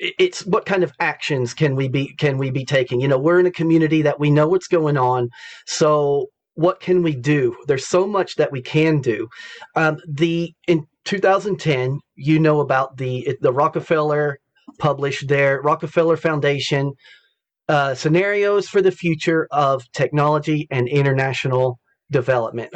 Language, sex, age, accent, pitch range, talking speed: English, male, 40-59, American, 140-170 Hz, 160 wpm